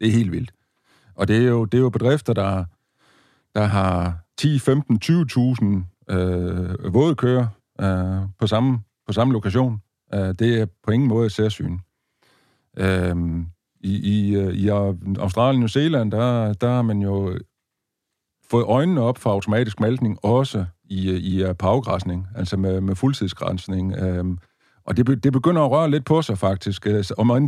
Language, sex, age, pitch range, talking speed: Danish, male, 50-69, 95-125 Hz, 155 wpm